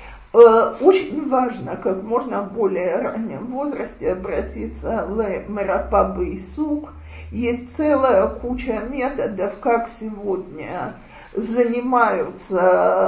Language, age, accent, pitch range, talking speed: Russian, 50-69, native, 225-325 Hz, 90 wpm